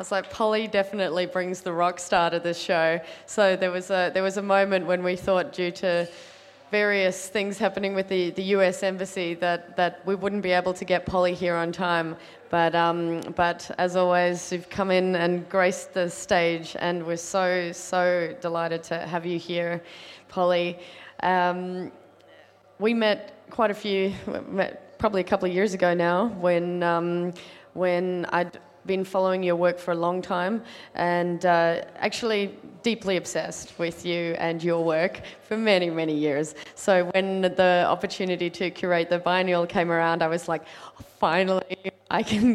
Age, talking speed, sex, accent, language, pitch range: 20-39, 175 wpm, female, Australian, English, 170-185 Hz